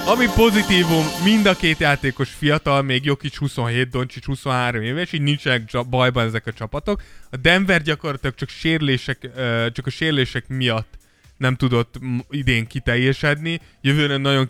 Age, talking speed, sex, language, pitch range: 20-39, 145 wpm, male, Hungarian, 120-150 Hz